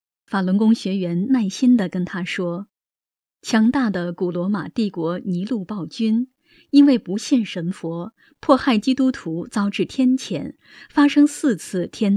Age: 20-39